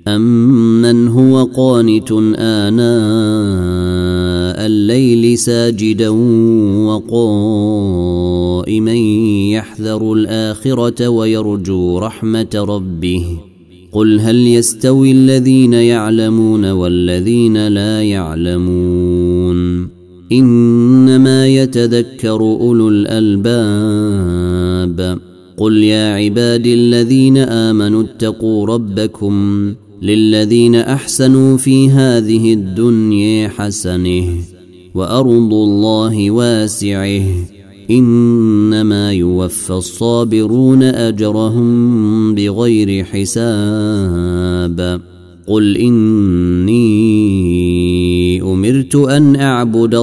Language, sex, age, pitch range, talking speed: Arabic, male, 30-49, 95-115 Hz, 60 wpm